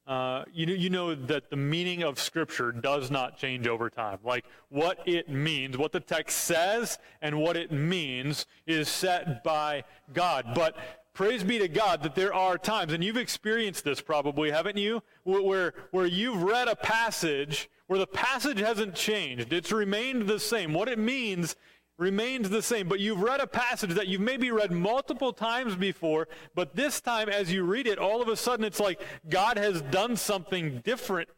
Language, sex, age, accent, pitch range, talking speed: English, male, 30-49, American, 155-205 Hz, 190 wpm